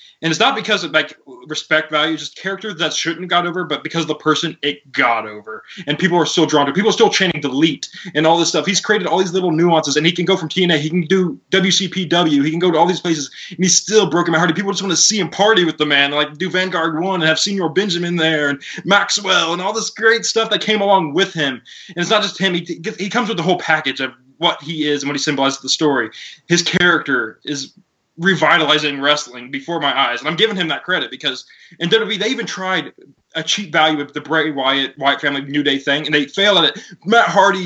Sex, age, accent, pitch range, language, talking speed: male, 20-39, American, 145-185 Hz, English, 260 wpm